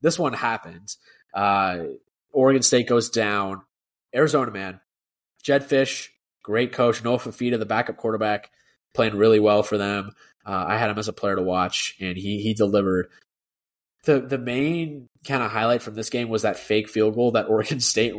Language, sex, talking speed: English, male, 180 wpm